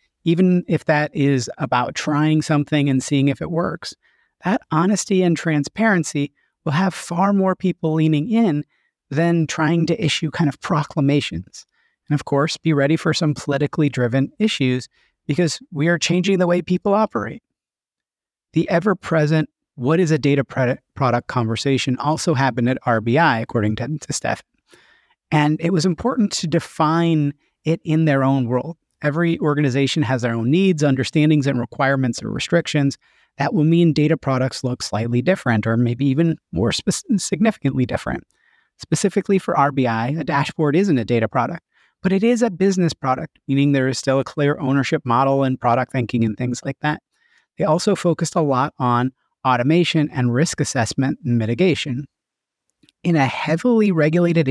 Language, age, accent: English, 30-49, American